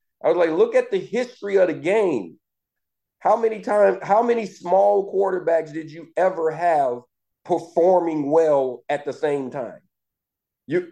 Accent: American